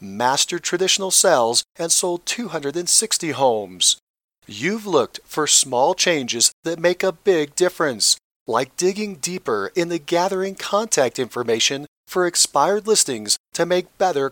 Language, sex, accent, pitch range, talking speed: English, male, American, 135-185 Hz, 130 wpm